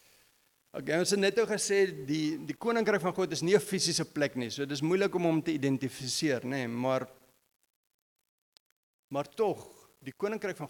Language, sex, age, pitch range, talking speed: English, male, 50-69, 135-175 Hz, 180 wpm